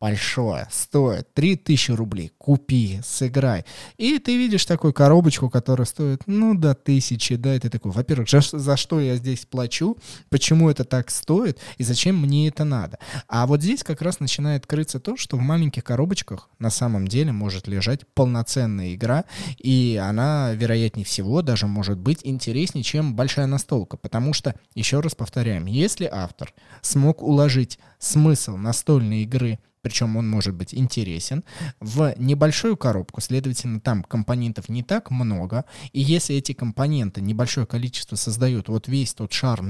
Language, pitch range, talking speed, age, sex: Russian, 115-150 Hz, 155 wpm, 20-39, male